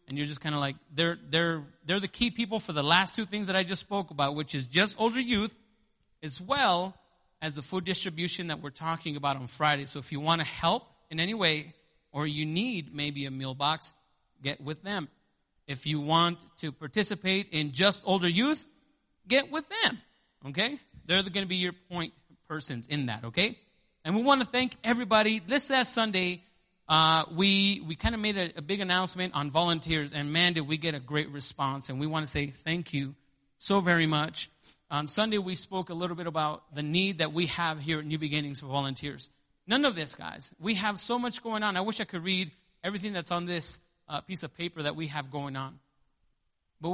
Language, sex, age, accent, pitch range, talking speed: English, male, 30-49, American, 150-195 Hz, 215 wpm